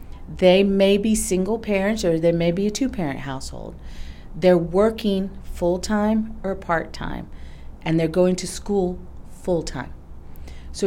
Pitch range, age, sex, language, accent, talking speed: 155-200 Hz, 40-59, female, English, American, 130 wpm